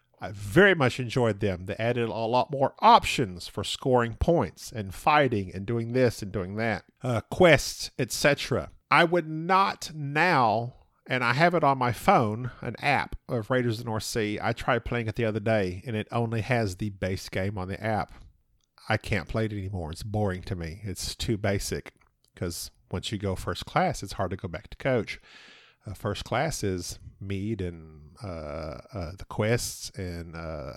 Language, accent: English, American